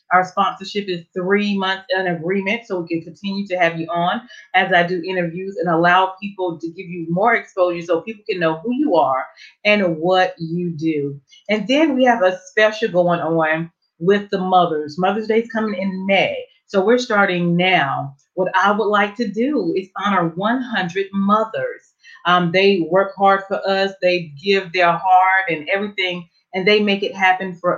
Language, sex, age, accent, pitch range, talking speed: English, female, 30-49, American, 170-205 Hz, 190 wpm